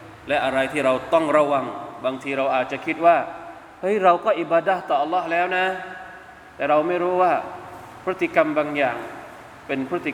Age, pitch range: 20-39, 125-170 Hz